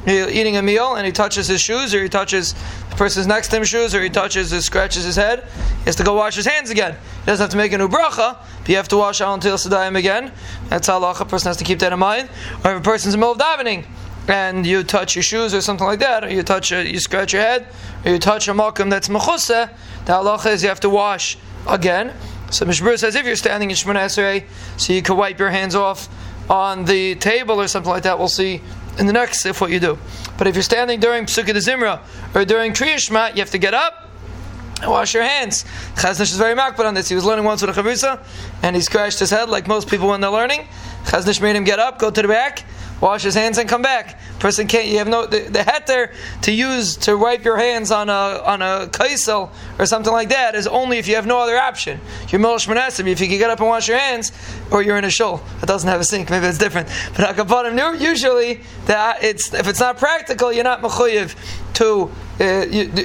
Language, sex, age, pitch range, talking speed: English, male, 20-39, 190-230 Hz, 245 wpm